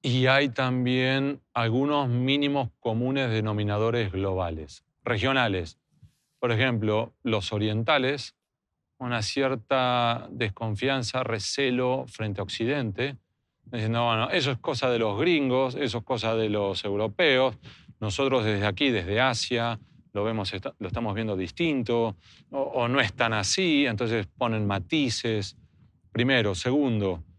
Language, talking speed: Spanish, 125 wpm